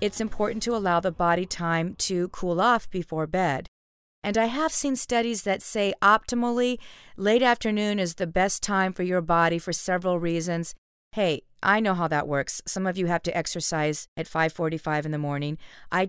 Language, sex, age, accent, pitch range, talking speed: English, female, 40-59, American, 160-210 Hz, 185 wpm